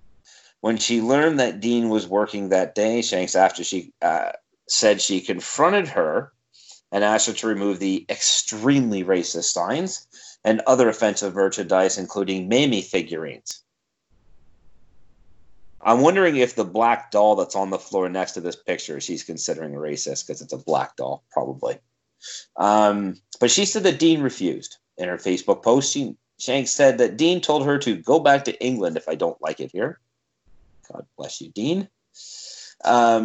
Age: 30-49